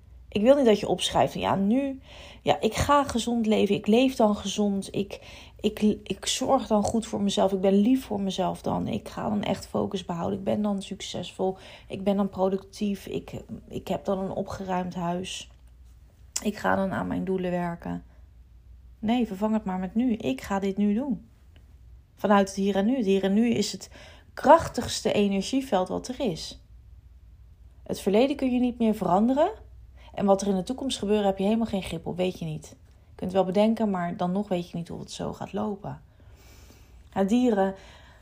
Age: 30-49